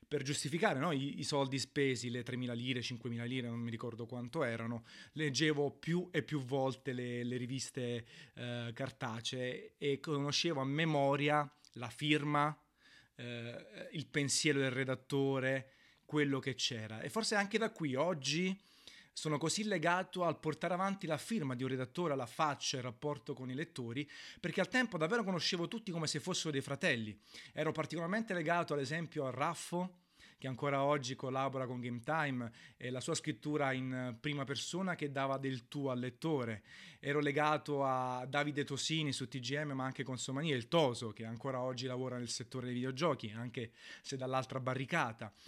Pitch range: 130-155 Hz